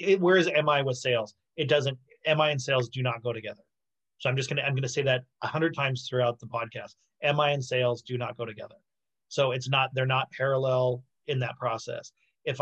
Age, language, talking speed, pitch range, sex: 30-49, English, 220 wpm, 125-150 Hz, male